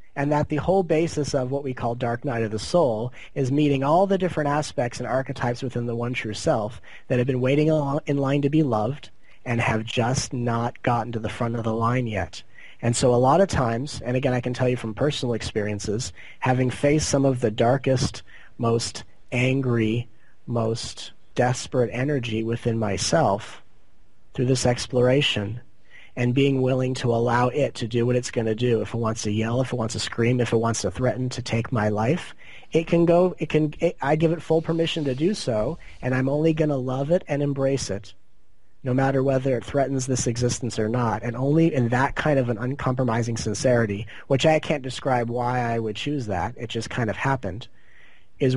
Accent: American